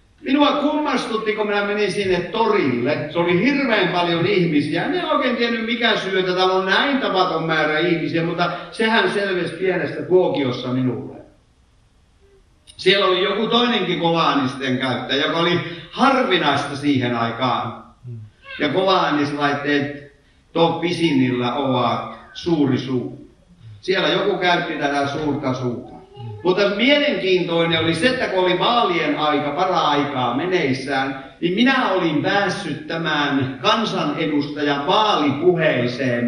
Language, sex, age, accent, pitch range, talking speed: Finnish, male, 60-79, native, 140-195 Hz, 120 wpm